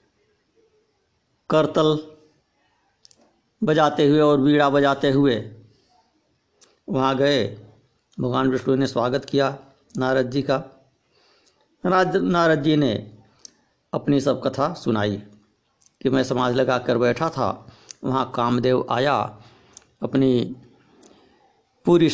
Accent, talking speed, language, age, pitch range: native, 100 wpm, Hindi, 60-79, 120-150 Hz